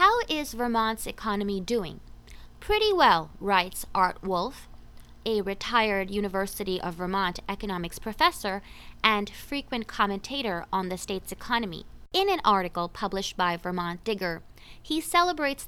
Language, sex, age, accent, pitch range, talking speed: English, female, 20-39, American, 200-280 Hz, 125 wpm